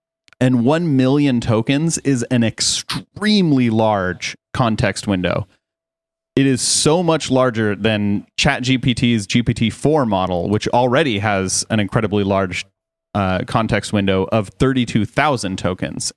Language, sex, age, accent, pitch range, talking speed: English, male, 30-49, American, 105-130 Hz, 115 wpm